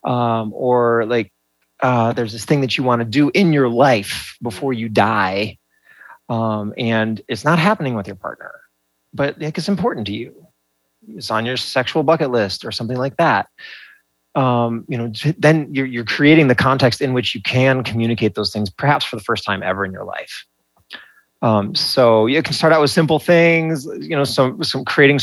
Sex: male